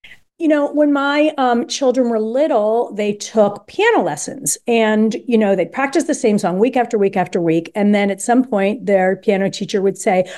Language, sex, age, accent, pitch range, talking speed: English, female, 50-69, American, 200-270 Hz, 200 wpm